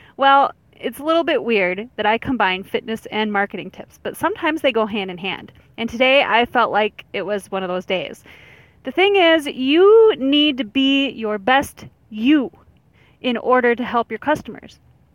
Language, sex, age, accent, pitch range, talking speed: English, female, 30-49, American, 205-275 Hz, 185 wpm